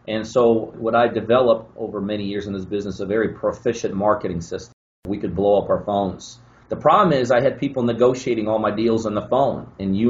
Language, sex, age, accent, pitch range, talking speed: English, male, 30-49, American, 105-120 Hz, 220 wpm